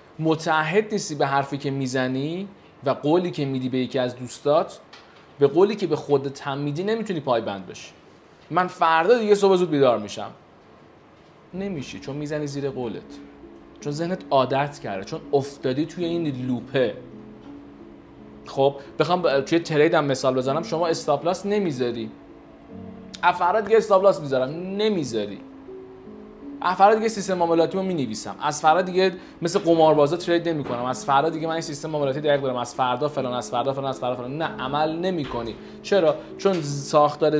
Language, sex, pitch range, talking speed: Persian, male, 130-180 Hz, 160 wpm